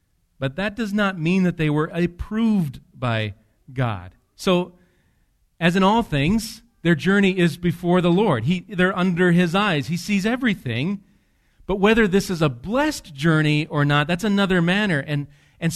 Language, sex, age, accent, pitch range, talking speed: English, male, 40-59, American, 115-170 Hz, 170 wpm